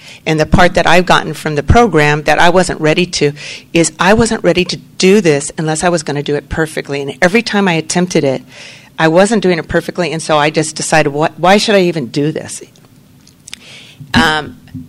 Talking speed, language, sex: 215 wpm, English, female